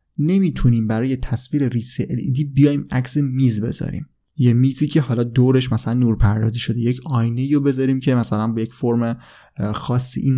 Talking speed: 160 wpm